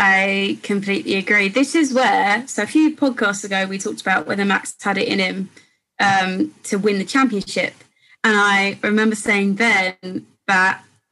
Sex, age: female, 20-39